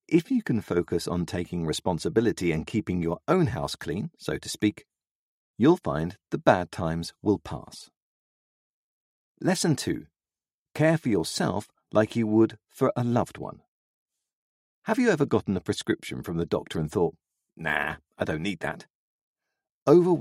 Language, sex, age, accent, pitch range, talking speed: English, male, 40-59, British, 85-135 Hz, 155 wpm